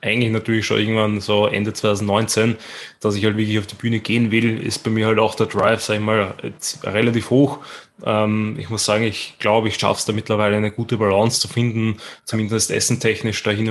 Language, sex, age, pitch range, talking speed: German, male, 20-39, 105-110 Hz, 205 wpm